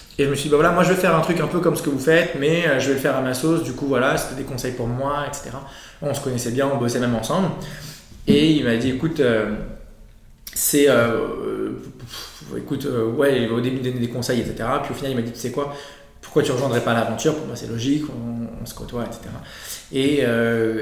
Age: 20-39